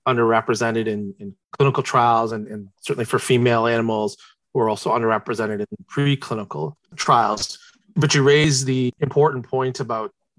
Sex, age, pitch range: male, 30-49, 115-140 Hz